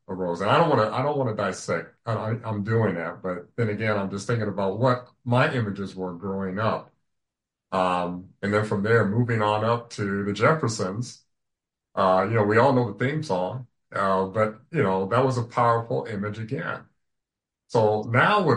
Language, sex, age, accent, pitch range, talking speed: English, male, 50-69, American, 100-125 Hz, 195 wpm